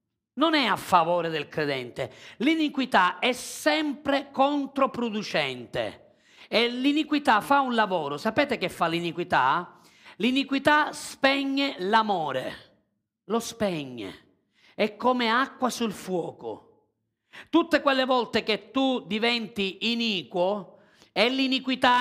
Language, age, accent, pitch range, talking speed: Italian, 40-59, native, 205-275 Hz, 105 wpm